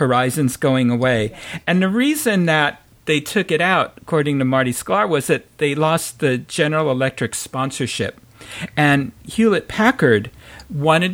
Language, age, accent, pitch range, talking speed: English, 50-69, American, 120-155 Hz, 145 wpm